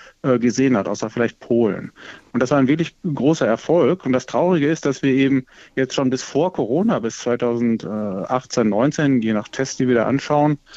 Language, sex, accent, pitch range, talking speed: German, male, German, 120-150 Hz, 190 wpm